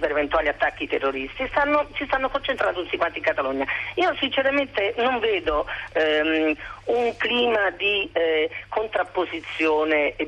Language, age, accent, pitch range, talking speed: Italian, 40-59, native, 145-230 Hz, 130 wpm